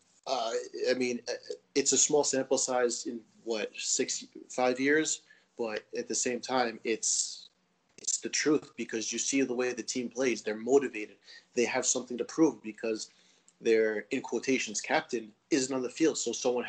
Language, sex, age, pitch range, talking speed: English, male, 30-49, 110-135 Hz, 175 wpm